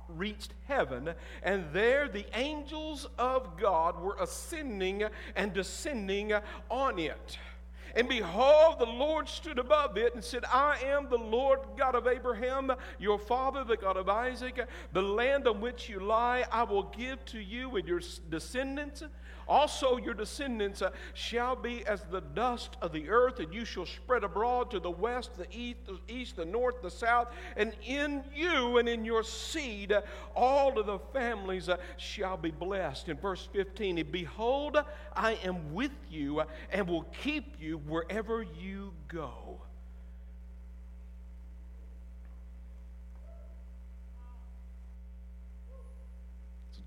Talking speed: 135 wpm